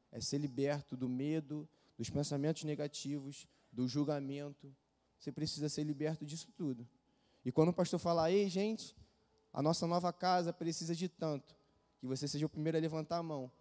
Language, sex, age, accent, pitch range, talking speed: Portuguese, male, 20-39, Brazilian, 130-160 Hz, 170 wpm